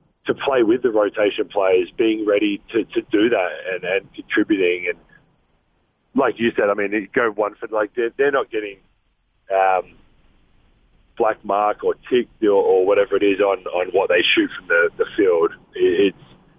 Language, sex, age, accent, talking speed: English, male, 40-59, Australian, 175 wpm